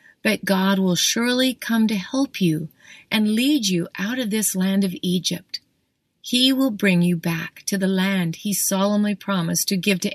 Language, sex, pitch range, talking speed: English, female, 180-220 Hz, 185 wpm